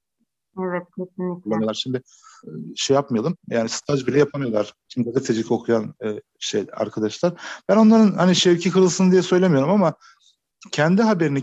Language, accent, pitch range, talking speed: Turkish, native, 120-170 Hz, 110 wpm